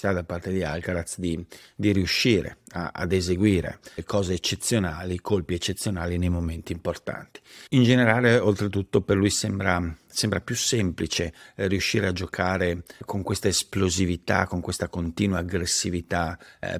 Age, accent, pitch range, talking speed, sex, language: 50-69, native, 85-100 Hz, 130 wpm, male, Italian